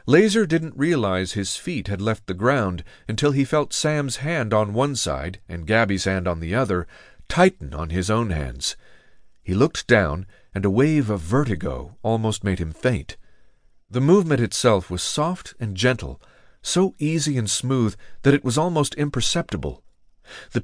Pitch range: 100-135 Hz